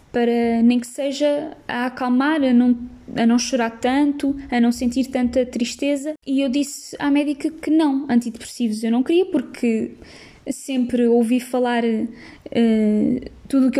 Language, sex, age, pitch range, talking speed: Portuguese, female, 10-29, 240-275 Hz, 155 wpm